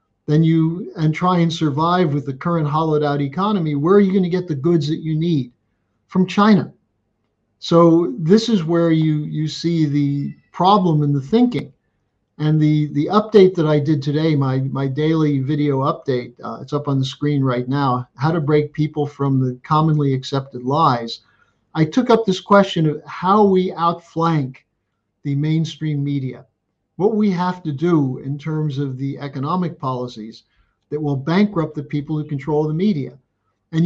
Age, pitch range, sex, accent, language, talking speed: 50-69, 135-170 Hz, male, American, English, 175 wpm